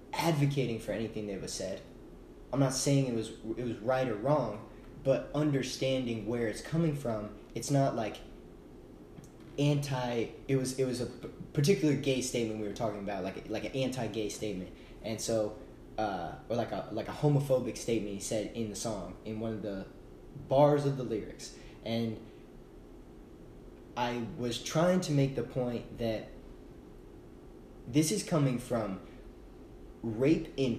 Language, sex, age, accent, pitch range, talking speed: English, male, 10-29, American, 115-155 Hz, 160 wpm